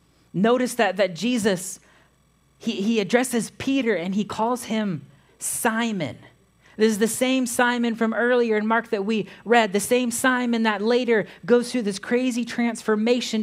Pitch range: 195-240 Hz